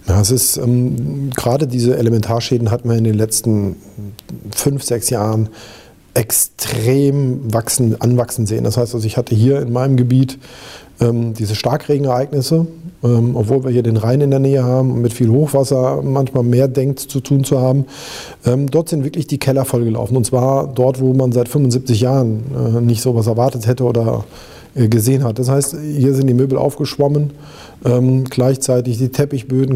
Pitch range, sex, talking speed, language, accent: 120-135 Hz, male, 175 wpm, German, German